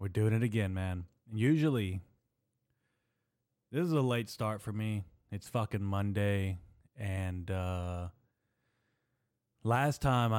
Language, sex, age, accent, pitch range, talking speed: English, male, 20-39, American, 95-115 Hz, 115 wpm